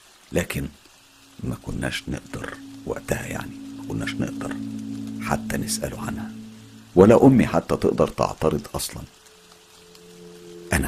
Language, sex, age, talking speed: Arabic, male, 50-69, 100 wpm